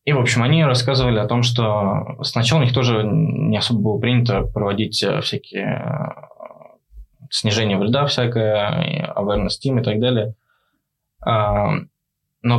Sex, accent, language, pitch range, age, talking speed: male, native, Russian, 105-130 Hz, 20-39, 135 wpm